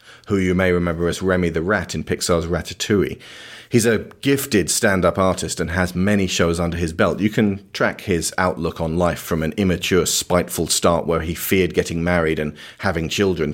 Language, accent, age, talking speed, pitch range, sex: English, British, 30-49, 190 wpm, 85-105 Hz, male